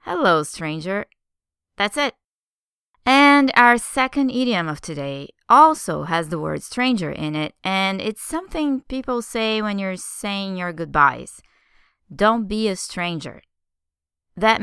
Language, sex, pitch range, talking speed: English, female, 165-240 Hz, 130 wpm